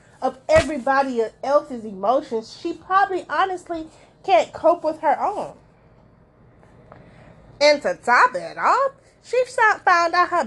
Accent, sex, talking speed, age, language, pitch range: American, female, 120 wpm, 20-39, English, 240-330 Hz